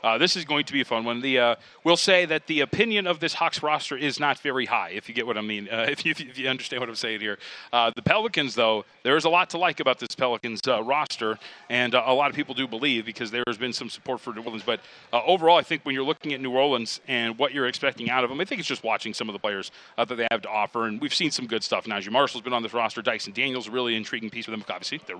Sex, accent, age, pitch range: male, American, 40-59, 115-145 Hz